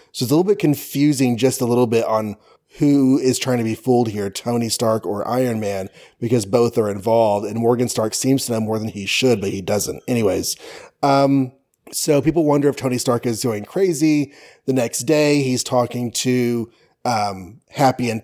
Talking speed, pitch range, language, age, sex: 195 wpm, 120-150 Hz, English, 30-49, male